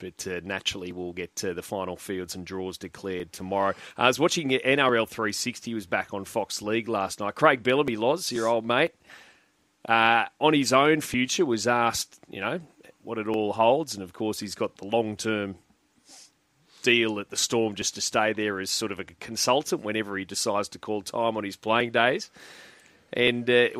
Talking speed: 190 wpm